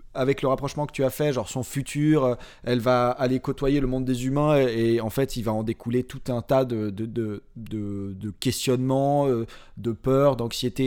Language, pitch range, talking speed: French, 120-145 Hz, 210 wpm